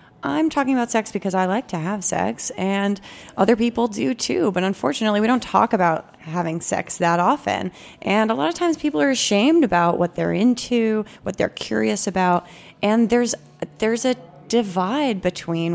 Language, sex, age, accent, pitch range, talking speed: English, female, 30-49, American, 170-210 Hz, 180 wpm